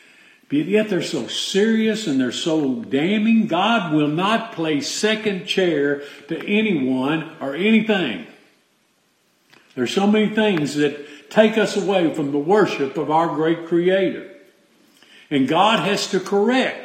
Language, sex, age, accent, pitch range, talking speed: English, male, 50-69, American, 145-205 Hz, 140 wpm